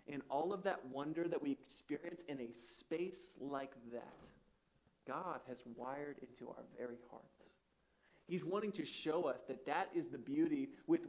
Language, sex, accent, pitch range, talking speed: English, male, American, 140-195 Hz, 170 wpm